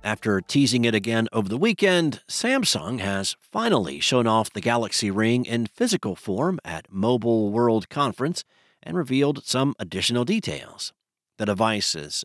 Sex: male